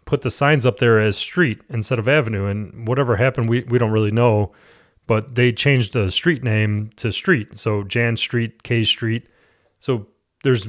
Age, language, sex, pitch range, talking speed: 30-49, English, male, 110-130 Hz, 185 wpm